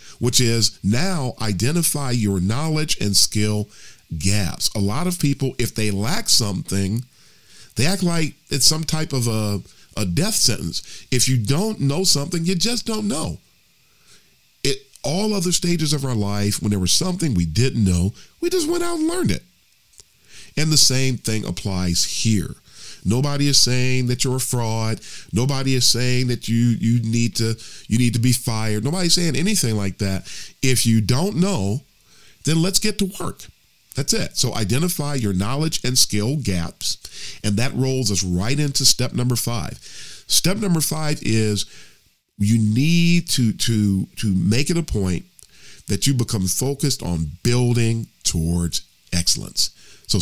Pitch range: 105-150 Hz